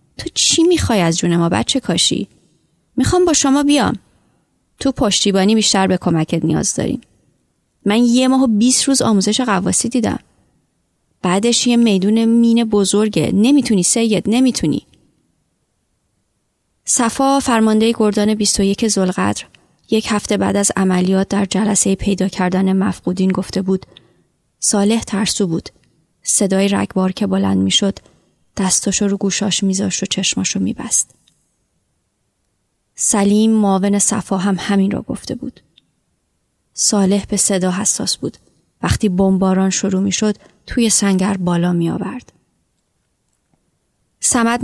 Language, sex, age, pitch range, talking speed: Persian, female, 30-49, 185-220 Hz, 120 wpm